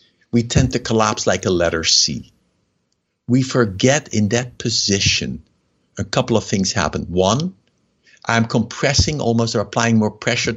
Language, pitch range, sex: English, 110-135 Hz, male